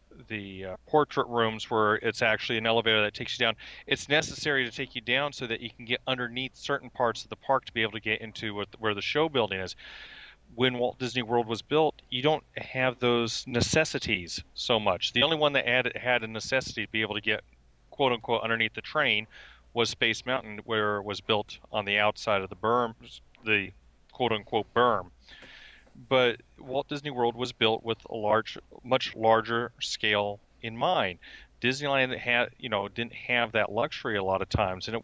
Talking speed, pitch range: 195 wpm, 110-130 Hz